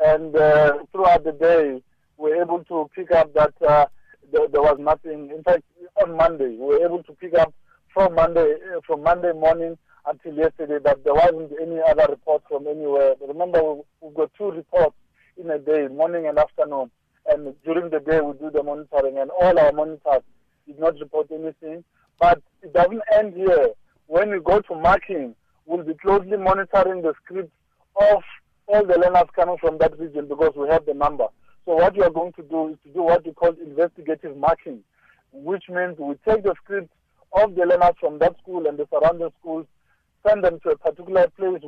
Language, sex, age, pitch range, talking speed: English, male, 50-69, 155-185 Hz, 195 wpm